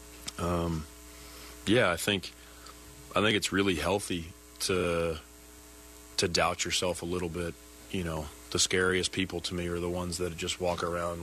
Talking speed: 160 wpm